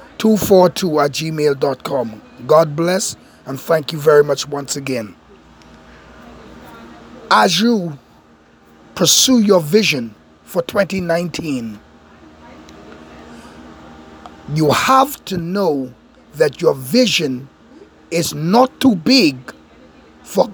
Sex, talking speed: male, 90 wpm